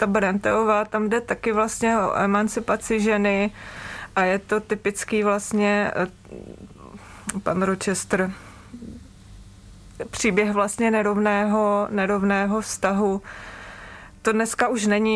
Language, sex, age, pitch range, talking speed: Czech, female, 20-39, 195-215 Hz, 100 wpm